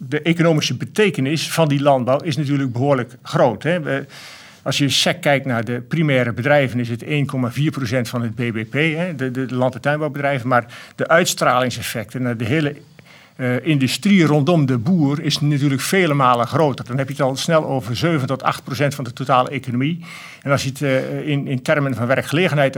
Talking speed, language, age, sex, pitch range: 170 wpm, Dutch, 50-69, male, 130-160 Hz